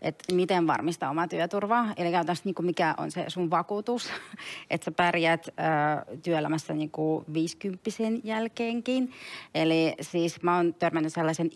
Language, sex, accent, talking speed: Finnish, female, native, 125 wpm